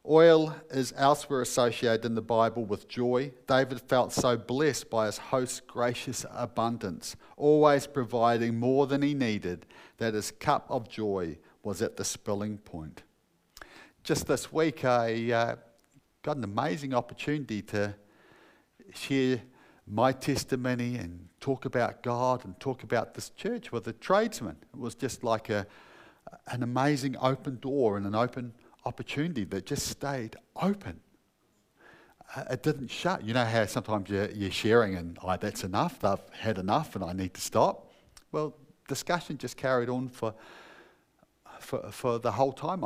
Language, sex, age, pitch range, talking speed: English, male, 50-69, 105-135 Hz, 150 wpm